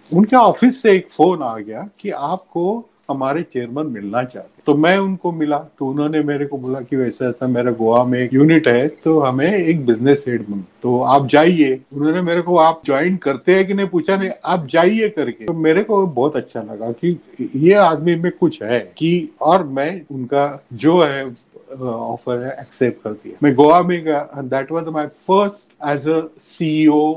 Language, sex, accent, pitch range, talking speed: Hindi, male, native, 130-165 Hz, 170 wpm